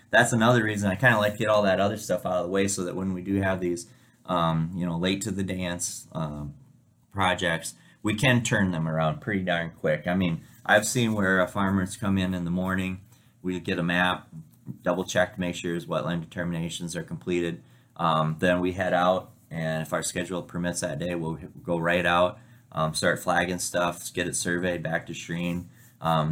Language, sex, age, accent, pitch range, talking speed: English, male, 20-39, American, 85-105 Hz, 215 wpm